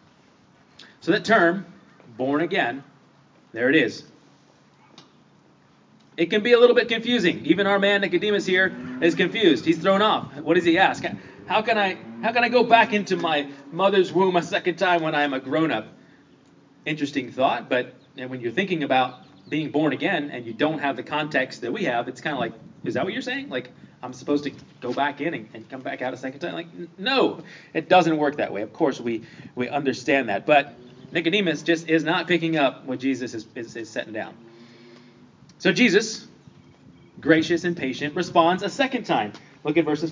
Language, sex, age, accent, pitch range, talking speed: English, male, 30-49, American, 130-175 Hz, 195 wpm